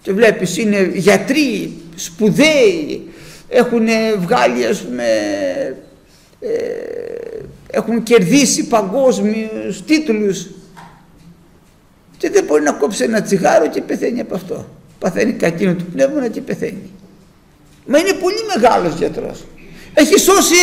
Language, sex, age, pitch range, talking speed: Greek, male, 60-79, 180-305 Hz, 110 wpm